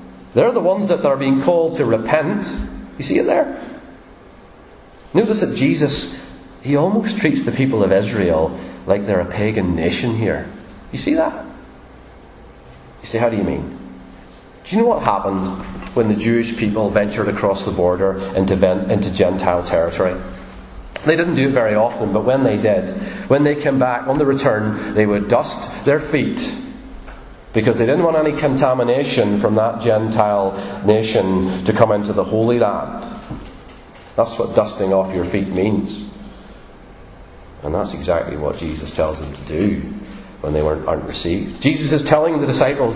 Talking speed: 165 wpm